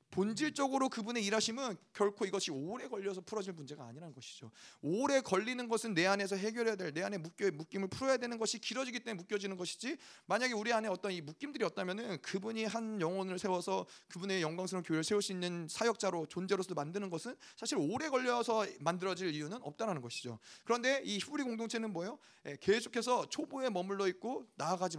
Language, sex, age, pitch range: Korean, male, 30-49, 150-210 Hz